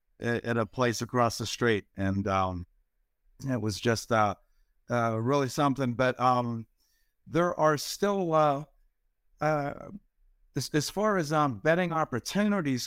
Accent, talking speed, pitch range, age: American, 135 wpm, 110-140 Hz, 60-79